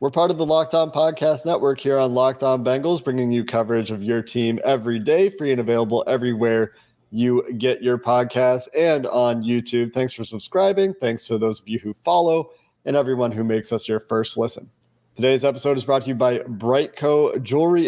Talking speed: 190 wpm